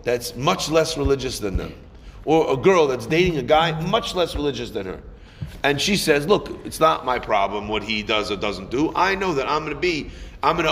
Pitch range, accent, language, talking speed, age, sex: 125-180 Hz, American, English, 225 wpm, 30-49, male